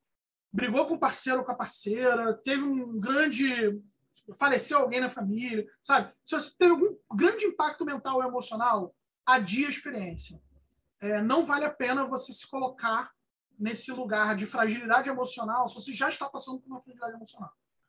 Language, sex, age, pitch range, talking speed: Portuguese, male, 20-39, 220-280 Hz, 165 wpm